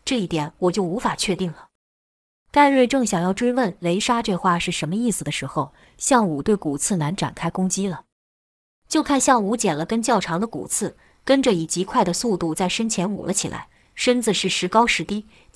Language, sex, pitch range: Chinese, female, 170-230 Hz